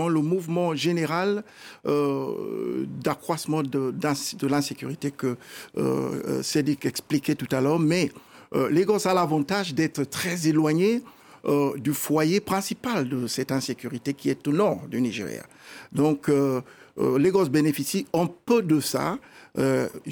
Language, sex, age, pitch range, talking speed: French, male, 60-79, 135-170 Hz, 135 wpm